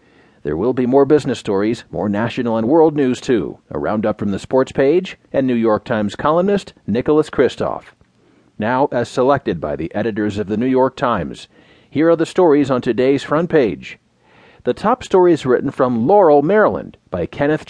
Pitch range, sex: 120-165 Hz, male